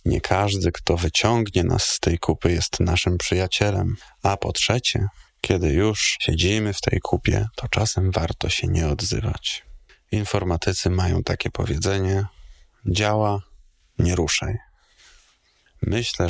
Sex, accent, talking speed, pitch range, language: male, native, 125 wpm, 90-105 Hz, Polish